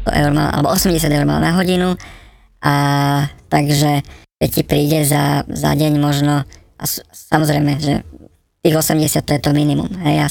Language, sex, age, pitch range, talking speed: Slovak, male, 20-39, 145-155 Hz, 140 wpm